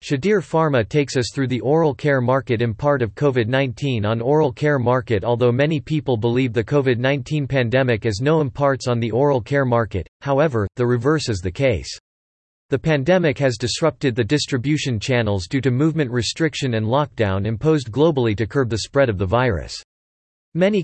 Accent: American